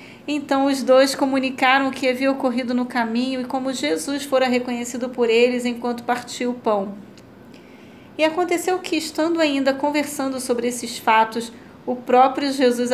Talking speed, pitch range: 155 wpm, 235-275 Hz